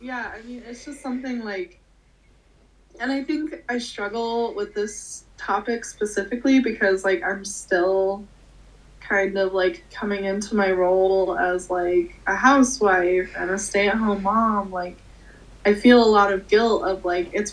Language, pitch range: English, 190-235 Hz